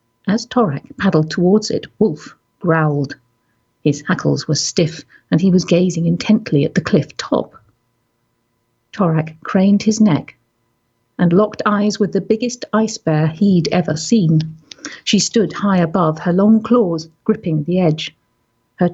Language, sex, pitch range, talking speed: English, female, 155-205 Hz, 145 wpm